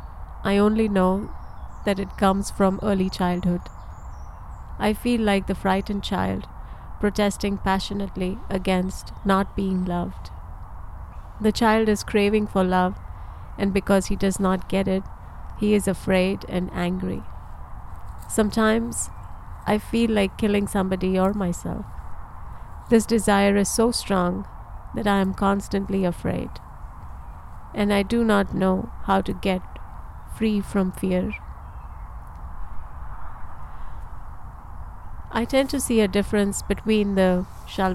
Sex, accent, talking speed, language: female, Indian, 120 wpm, English